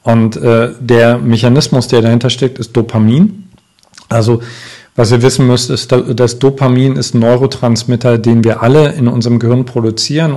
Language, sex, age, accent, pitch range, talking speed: German, male, 40-59, German, 115-125 Hz, 155 wpm